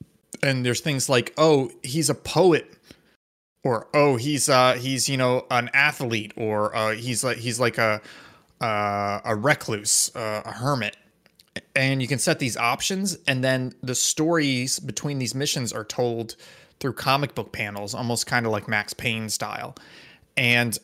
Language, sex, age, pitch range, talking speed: English, male, 20-39, 120-155 Hz, 165 wpm